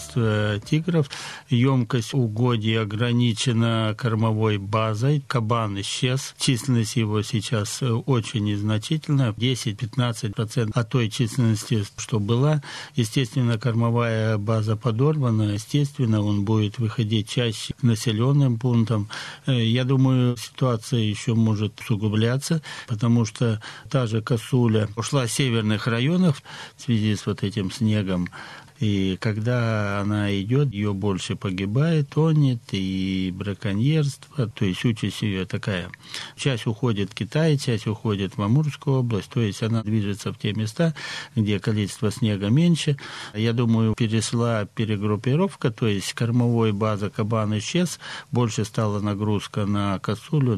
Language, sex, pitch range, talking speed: Russian, male, 105-125 Hz, 120 wpm